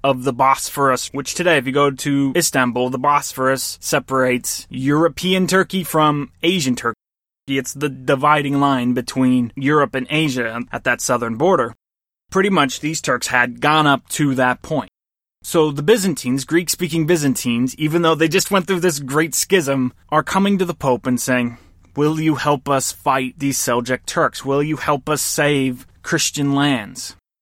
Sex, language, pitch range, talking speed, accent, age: male, English, 125-160 Hz, 165 wpm, American, 20-39